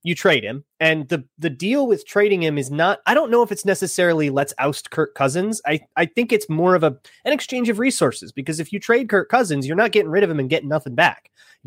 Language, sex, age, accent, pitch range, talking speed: English, male, 30-49, American, 120-170 Hz, 255 wpm